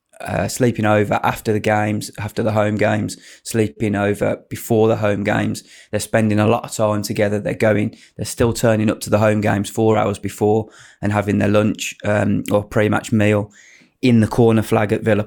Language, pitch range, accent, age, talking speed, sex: English, 105-115 Hz, British, 20-39, 195 wpm, male